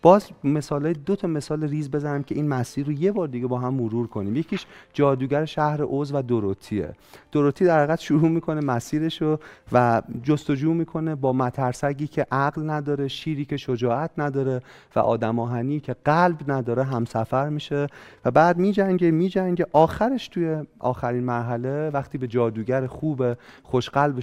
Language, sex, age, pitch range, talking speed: Persian, male, 40-59, 115-150 Hz, 155 wpm